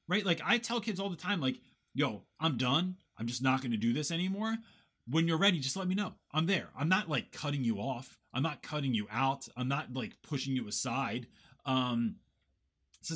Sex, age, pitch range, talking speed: male, 30-49, 115-160 Hz, 220 wpm